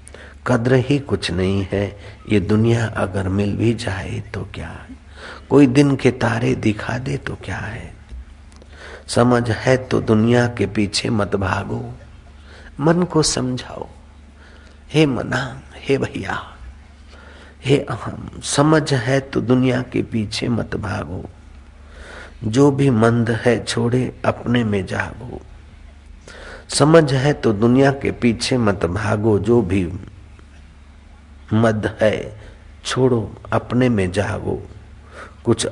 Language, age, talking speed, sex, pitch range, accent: Hindi, 50-69, 125 wpm, male, 85-120 Hz, native